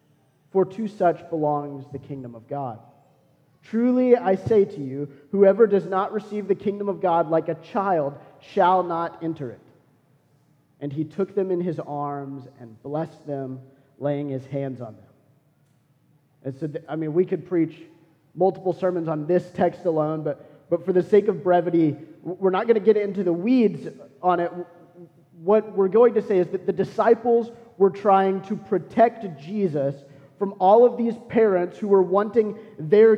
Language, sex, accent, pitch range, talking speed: English, male, American, 150-210 Hz, 175 wpm